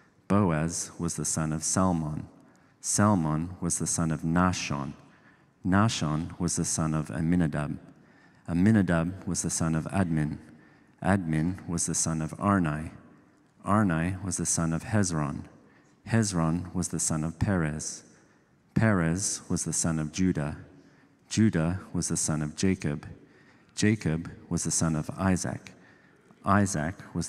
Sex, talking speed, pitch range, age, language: male, 135 wpm, 80-95 Hz, 40-59, English